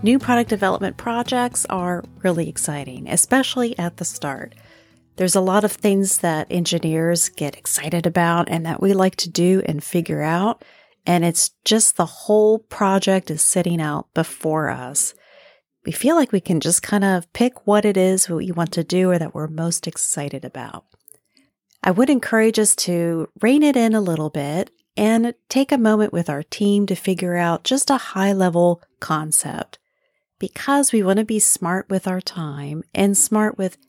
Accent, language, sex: American, English, female